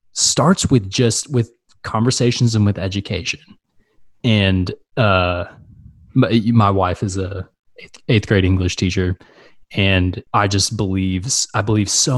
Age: 20-39